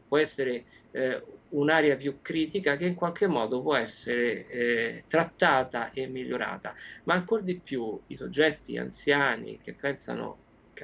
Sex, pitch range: male, 120-160 Hz